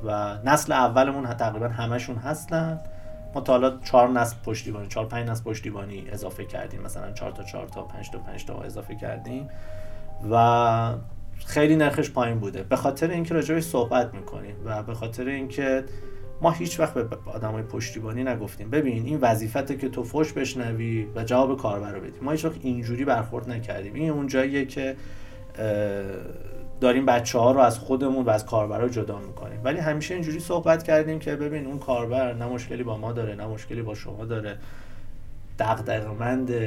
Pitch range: 105-135 Hz